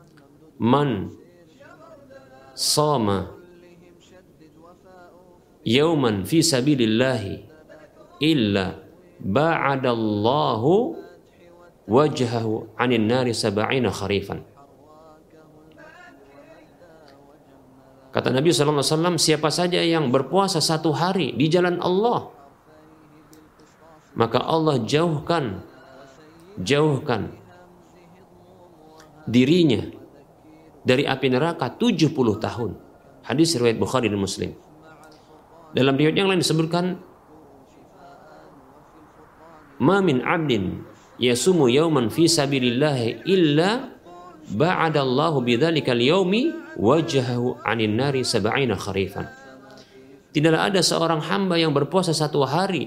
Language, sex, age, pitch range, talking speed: Indonesian, male, 50-69, 125-165 Hz, 70 wpm